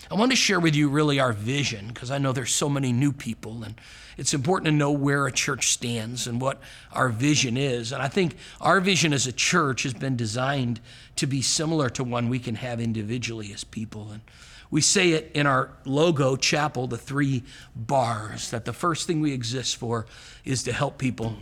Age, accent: 50-69, American